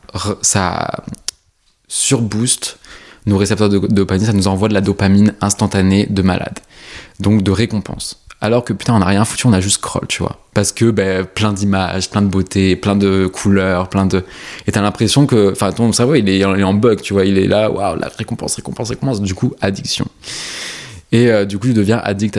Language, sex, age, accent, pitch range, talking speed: French, male, 20-39, French, 95-115 Hz, 210 wpm